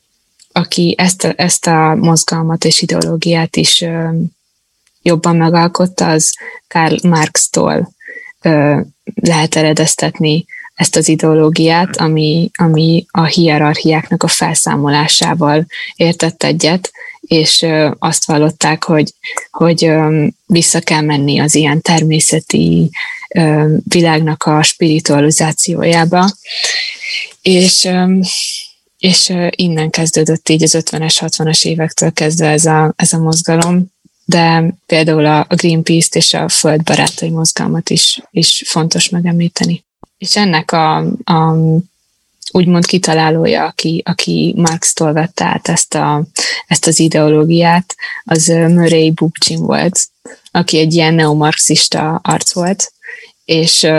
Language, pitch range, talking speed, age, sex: Hungarian, 155-175 Hz, 110 wpm, 20-39, female